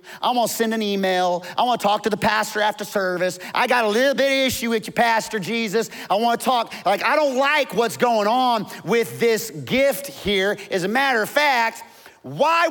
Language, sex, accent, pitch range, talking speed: English, male, American, 175-270 Hz, 220 wpm